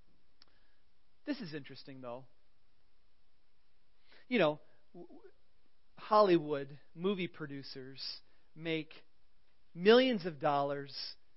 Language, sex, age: English, male, 40-59